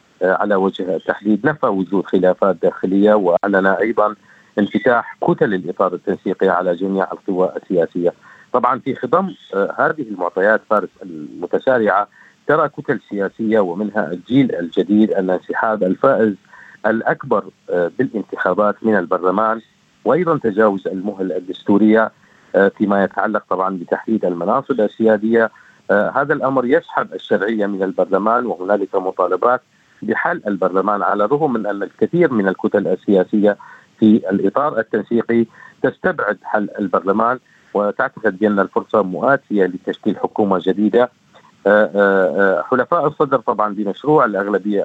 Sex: male